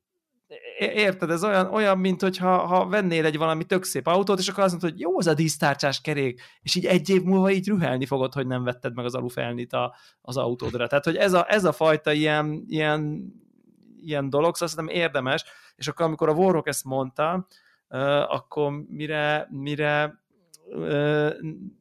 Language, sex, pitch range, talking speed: Hungarian, male, 125-165 Hz, 180 wpm